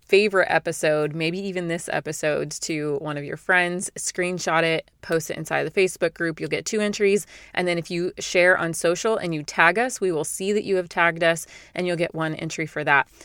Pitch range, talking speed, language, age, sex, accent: 160-185 Hz, 220 wpm, English, 30-49, female, American